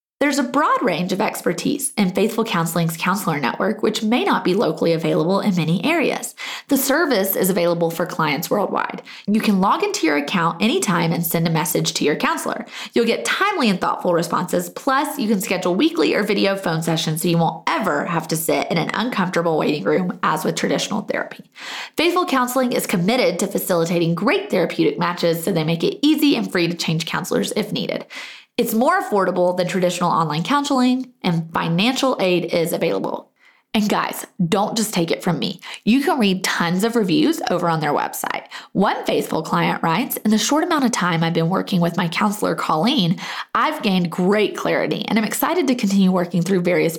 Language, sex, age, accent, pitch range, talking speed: English, female, 20-39, American, 170-250 Hz, 195 wpm